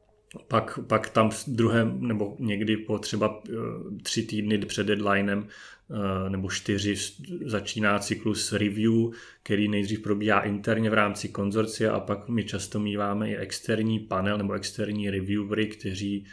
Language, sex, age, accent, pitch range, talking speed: Czech, male, 30-49, native, 100-110 Hz, 130 wpm